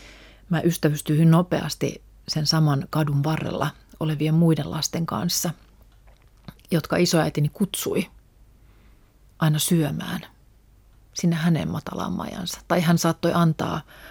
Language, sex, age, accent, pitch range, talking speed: Finnish, female, 40-59, native, 140-170 Hz, 100 wpm